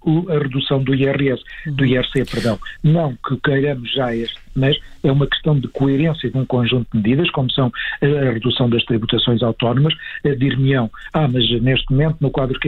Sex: male